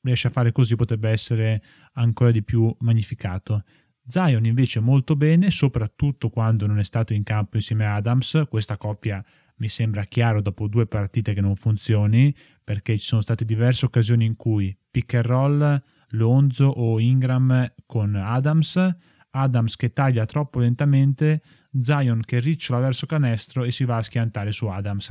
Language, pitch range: Italian, 110-130 Hz